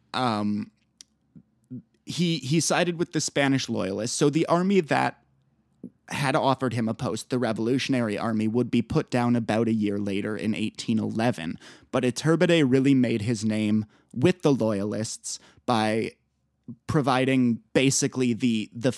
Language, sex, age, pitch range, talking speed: English, male, 20-39, 115-145 Hz, 140 wpm